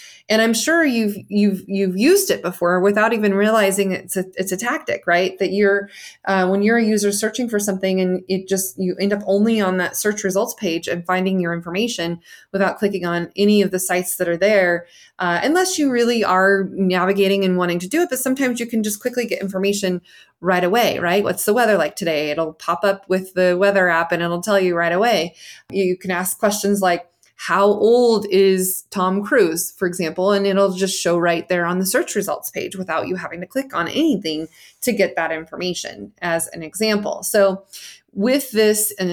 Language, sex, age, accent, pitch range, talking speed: English, female, 20-39, American, 180-215 Hz, 205 wpm